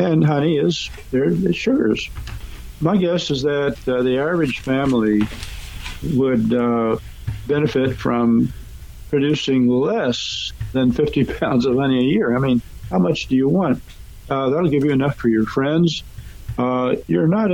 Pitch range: 110-145 Hz